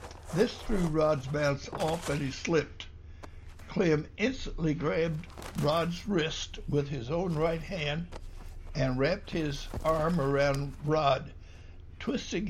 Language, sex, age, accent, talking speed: English, male, 60-79, American, 120 wpm